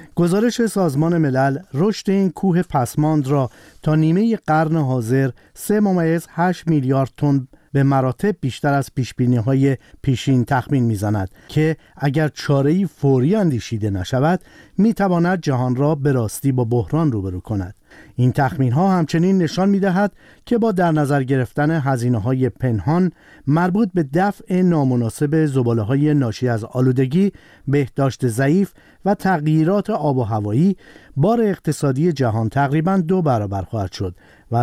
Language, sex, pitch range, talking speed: Persian, male, 130-175 Hz, 135 wpm